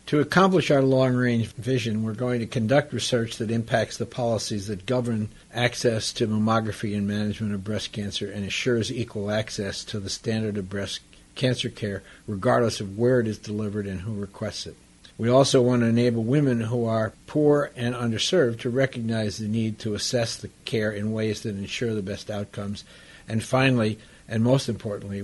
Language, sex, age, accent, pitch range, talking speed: English, male, 60-79, American, 100-120 Hz, 180 wpm